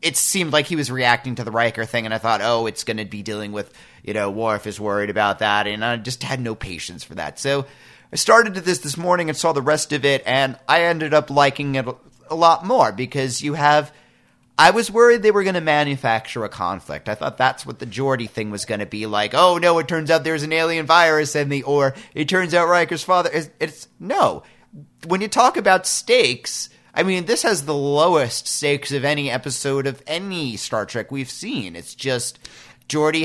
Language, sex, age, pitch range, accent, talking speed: English, male, 30-49, 115-160 Hz, American, 225 wpm